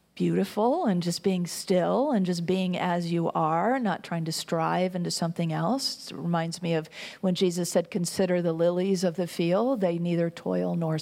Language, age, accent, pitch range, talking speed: English, 50-69, American, 170-225 Hz, 190 wpm